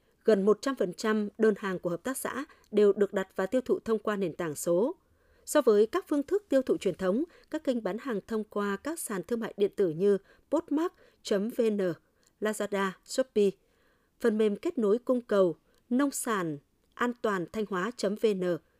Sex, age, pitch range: female, 20-39, 195-260 Hz